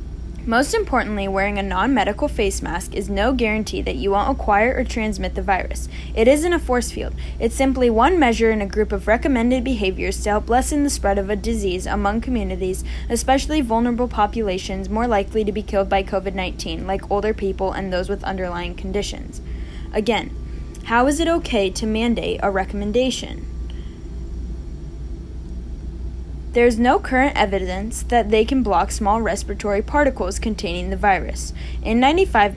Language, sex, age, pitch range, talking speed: English, female, 10-29, 185-240 Hz, 160 wpm